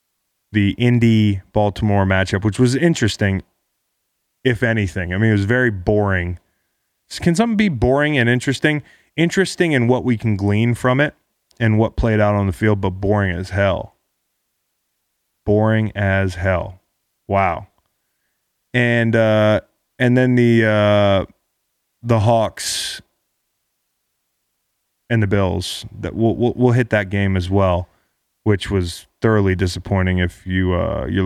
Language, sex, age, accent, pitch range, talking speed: English, male, 20-39, American, 95-120 Hz, 140 wpm